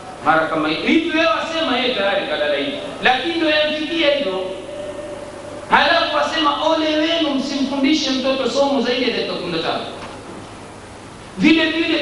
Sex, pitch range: male, 205-275 Hz